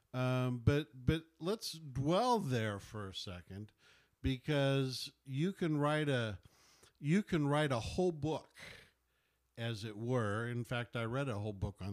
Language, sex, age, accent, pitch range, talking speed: English, male, 50-69, American, 115-140 Hz, 155 wpm